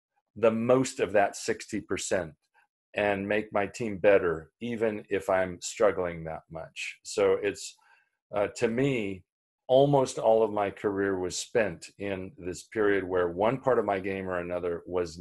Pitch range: 95-120 Hz